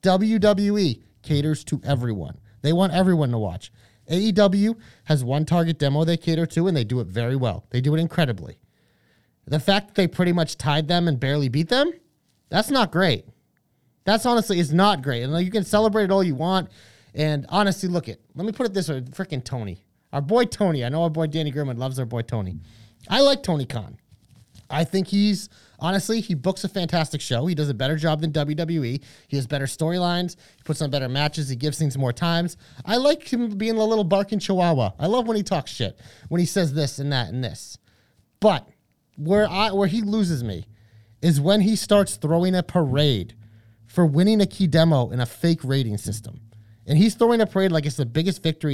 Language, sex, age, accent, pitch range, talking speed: English, male, 30-49, American, 125-185 Hz, 210 wpm